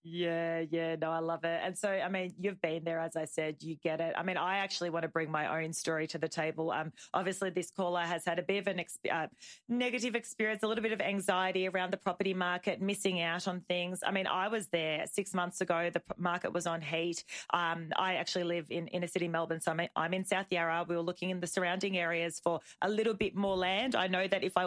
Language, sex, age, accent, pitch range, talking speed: English, female, 30-49, Australian, 170-200 Hz, 250 wpm